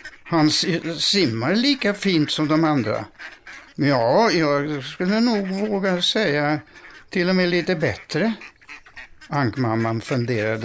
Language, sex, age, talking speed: Swedish, male, 60-79, 115 wpm